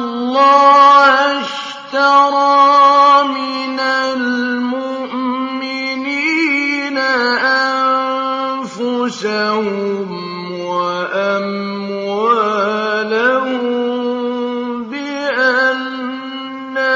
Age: 50-69